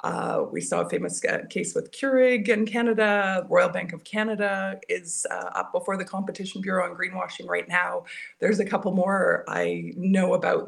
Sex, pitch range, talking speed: female, 180-260 Hz, 180 wpm